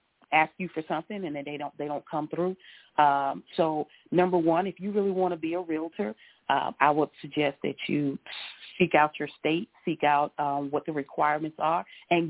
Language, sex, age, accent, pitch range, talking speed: English, female, 40-59, American, 145-180 Hz, 205 wpm